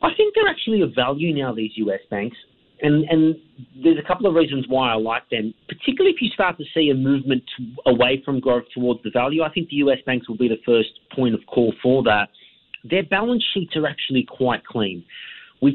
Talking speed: 220 wpm